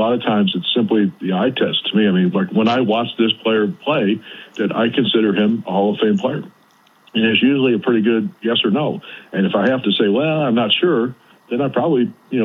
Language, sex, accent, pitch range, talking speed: English, male, American, 100-170 Hz, 250 wpm